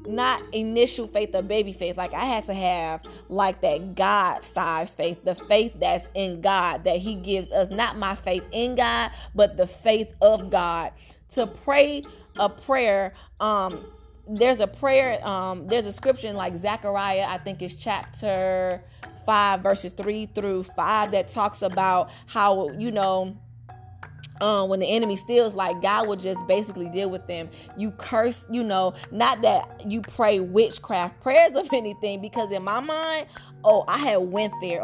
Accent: American